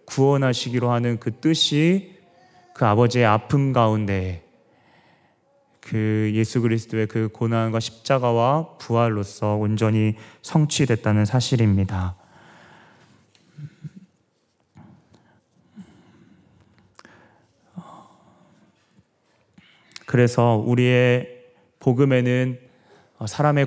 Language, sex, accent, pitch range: Korean, male, native, 110-130 Hz